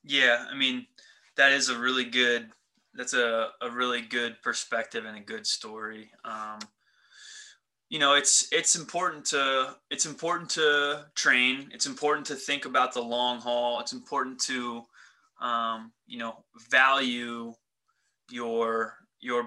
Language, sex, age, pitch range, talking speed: English, male, 20-39, 120-145 Hz, 140 wpm